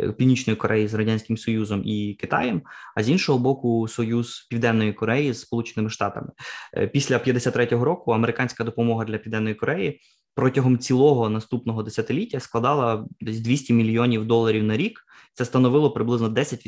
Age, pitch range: 20-39, 110-130 Hz